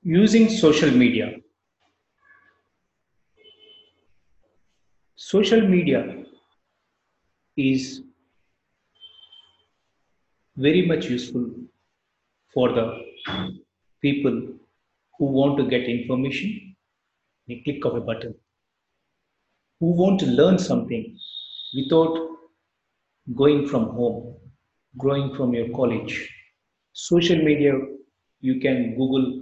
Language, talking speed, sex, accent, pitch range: English, 80 wpm, male, Indian, 120-160 Hz